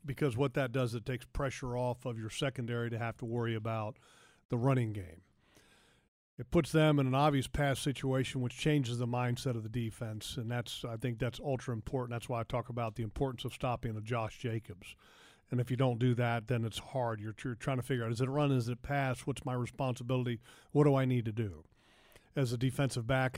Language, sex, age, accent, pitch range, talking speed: English, male, 40-59, American, 120-150 Hz, 225 wpm